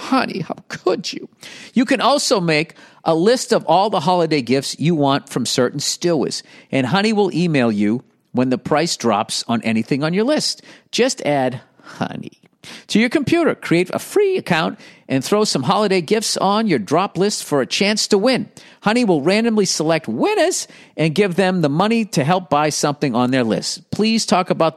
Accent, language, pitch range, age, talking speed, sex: American, English, 145-200 Hz, 50-69, 190 wpm, male